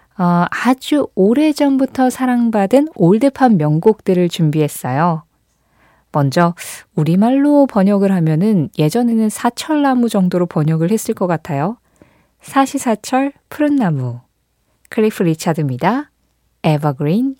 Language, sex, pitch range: Korean, female, 160-235 Hz